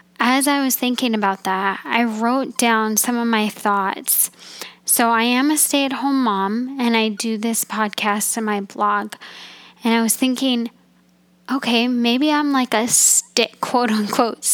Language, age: English, 10-29